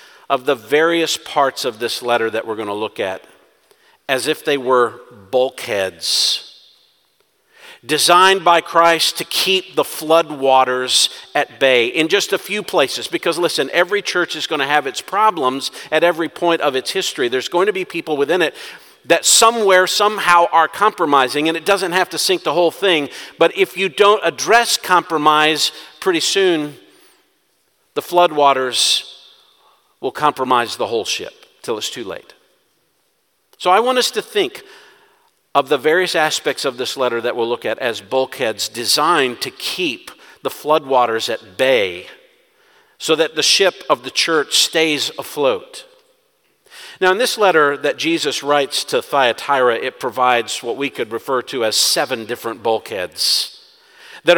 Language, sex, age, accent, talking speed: English, male, 50-69, American, 160 wpm